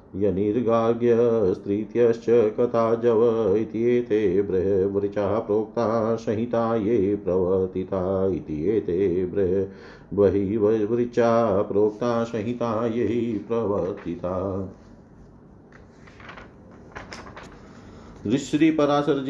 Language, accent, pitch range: Hindi, native, 95-120 Hz